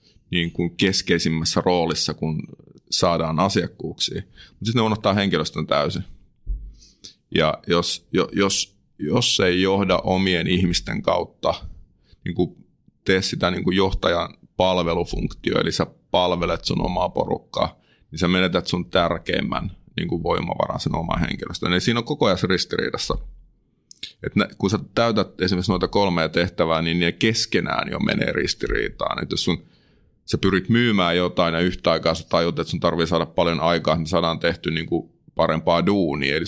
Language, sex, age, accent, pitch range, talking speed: Finnish, male, 30-49, native, 85-100 Hz, 150 wpm